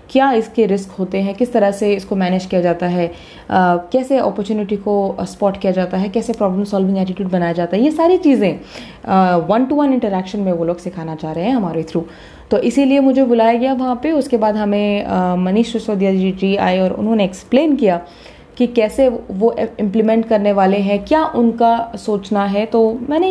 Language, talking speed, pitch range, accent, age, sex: Hindi, 195 wpm, 185-240 Hz, native, 20-39, female